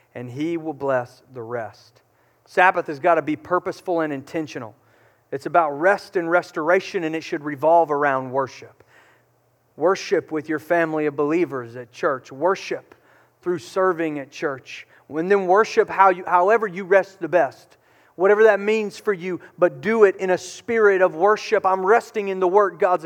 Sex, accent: male, American